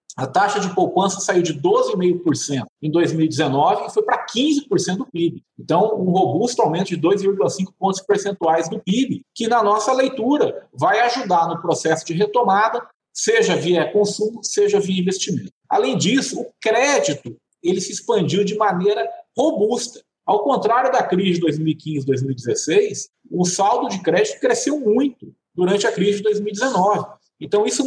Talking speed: 150 wpm